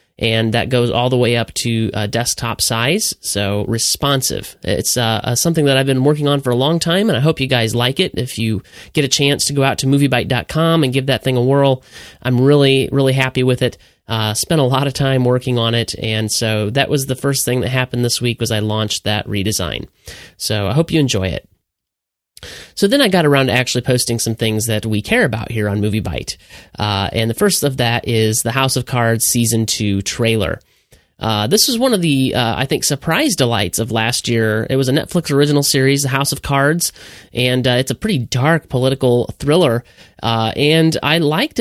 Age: 30-49